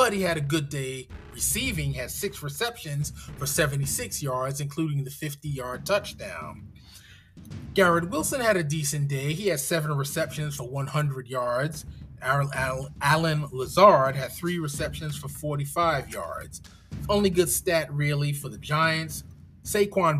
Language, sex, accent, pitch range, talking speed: English, male, American, 125-165 Hz, 135 wpm